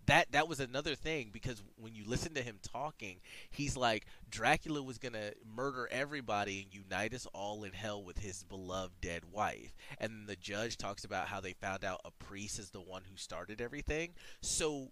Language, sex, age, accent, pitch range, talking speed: English, male, 30-49, American, 105-160 Hz, 200 wpm